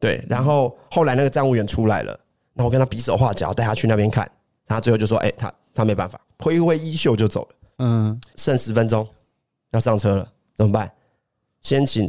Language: Chinese